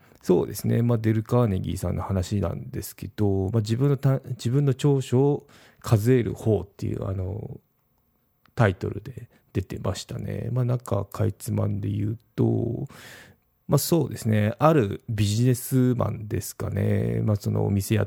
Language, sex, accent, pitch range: Japanese, male, native, 100-125 Hz